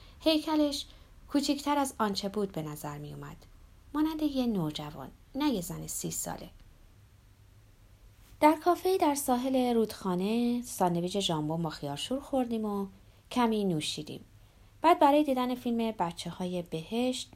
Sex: female